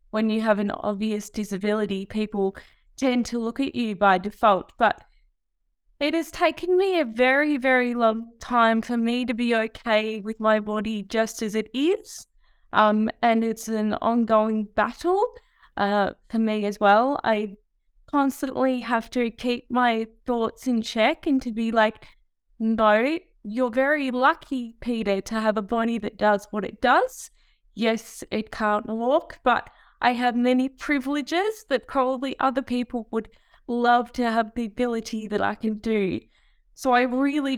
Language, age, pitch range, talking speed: English, 20-39, 215-255 Hz, 160 wpm